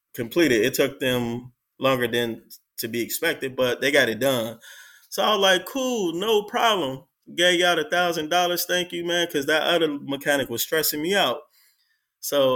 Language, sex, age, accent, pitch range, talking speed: English, male, 20-39, American, 120-170 Hz, 185 wpm